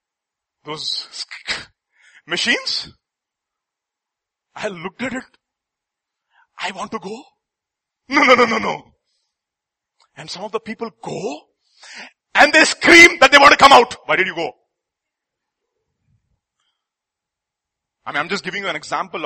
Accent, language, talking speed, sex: Indian, English, 130 wpm, male